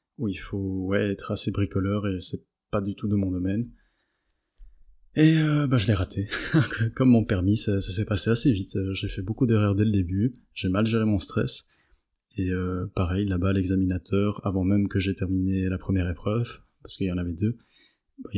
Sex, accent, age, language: male, French, 20-39, French